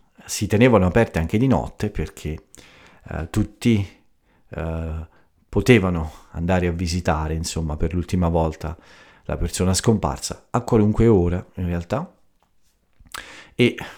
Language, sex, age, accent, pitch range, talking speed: Italian, male, 50-69, native, 80-100 Hz, 115 wpm